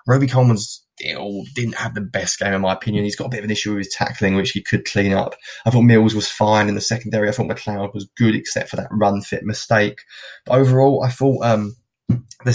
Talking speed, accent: 240 wpm, British